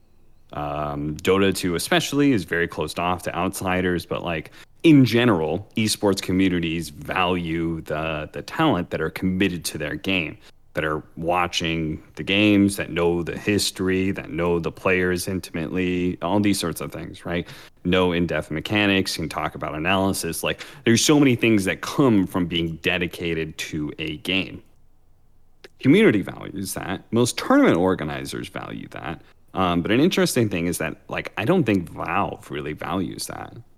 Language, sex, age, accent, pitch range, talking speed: English, male, 30-49, American, 85-110 Hz, 160 wpm